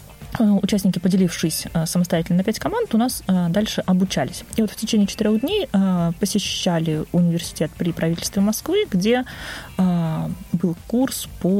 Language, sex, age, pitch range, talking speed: Russian, female, 20-39, 170-210 Hz, 130 wpm